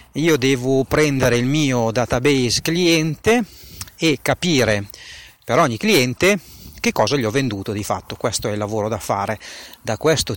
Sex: male